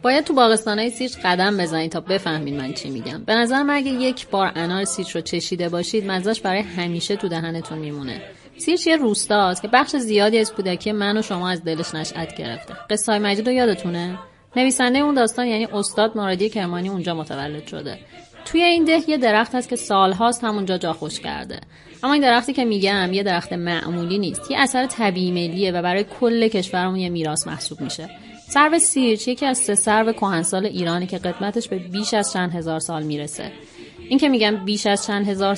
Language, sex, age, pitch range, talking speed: Persian, female, 30-49, 175-230 Hz, 190 wpm